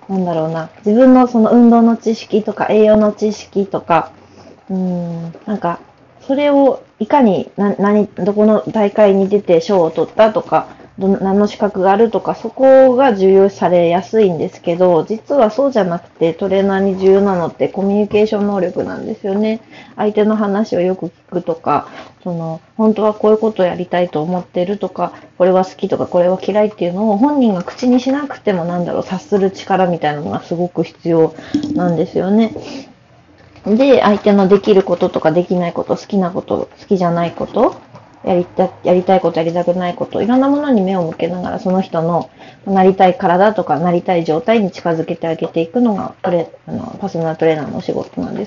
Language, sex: Japanese, female